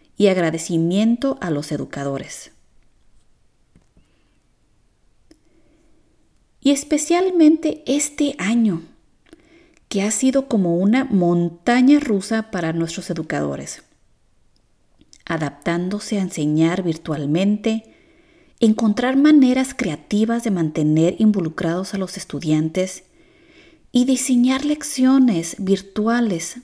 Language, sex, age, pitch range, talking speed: Spanish, female, 30-49, 170-250 Hz, 80 wpm